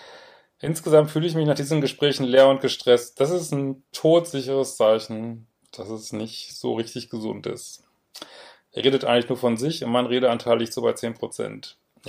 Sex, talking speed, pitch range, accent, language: male, 175 wpm, 110-135 Hz, German, German